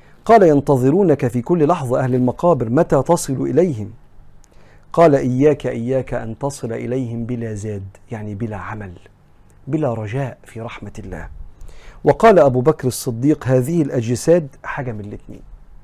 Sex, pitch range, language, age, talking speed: male, 110-155 Hz, Arabic, 50-69, 130 wpm